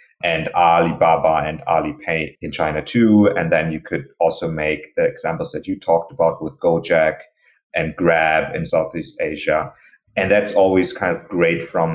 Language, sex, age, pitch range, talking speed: English, male, 30-49, 85-105 Hz, 165 wpm